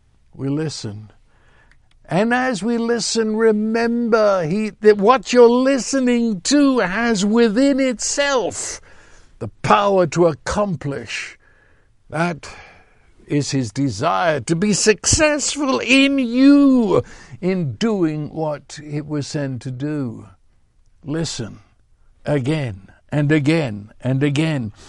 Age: 60-79